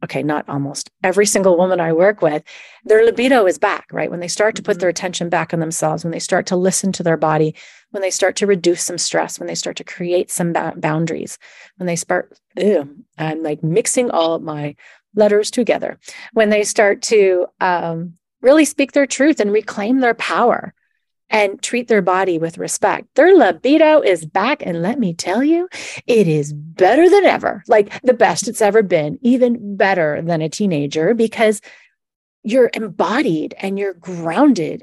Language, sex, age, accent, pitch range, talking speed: English, female, 40-59, American, 165-225 Hz, 185 wpm